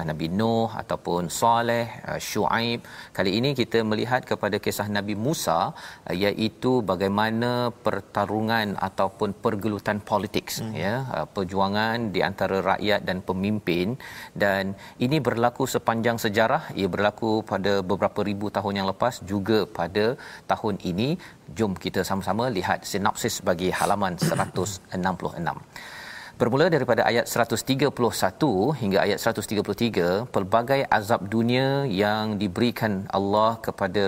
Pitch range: 100-115 Hz